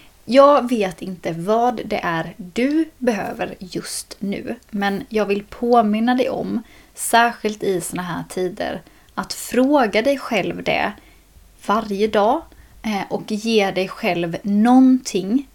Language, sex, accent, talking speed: Swedish, female, native, 125 wpm